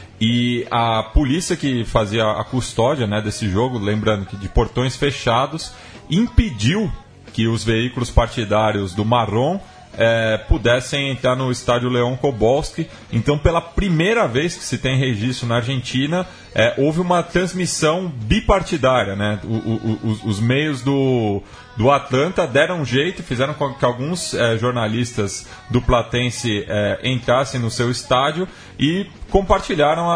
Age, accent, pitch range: 30-49, Brazilian, 115-145 Hz